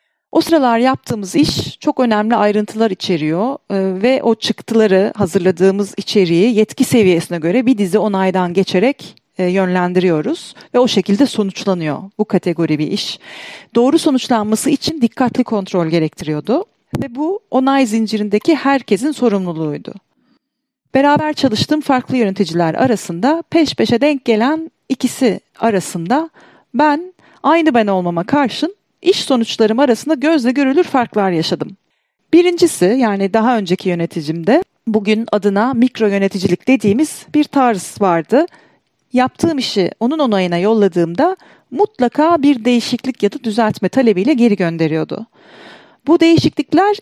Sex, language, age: female, Turkish, 40-59